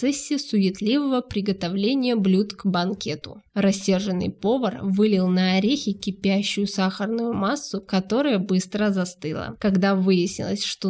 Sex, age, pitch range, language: female, 20-39, 185-215 Hz, Russian